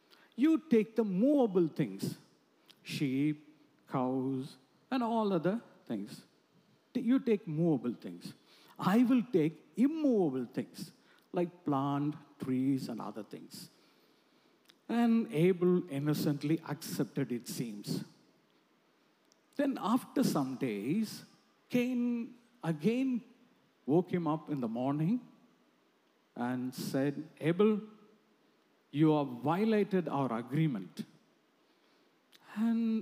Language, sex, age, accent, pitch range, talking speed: English, male, 50-69, Indian, 150-230 Hz, 95 wpm